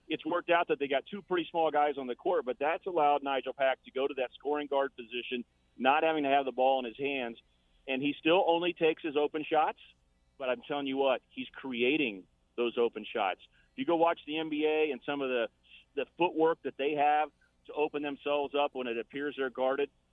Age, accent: 40-59, American